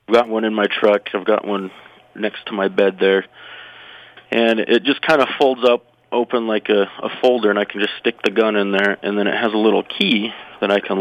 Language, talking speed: English, 245 wpm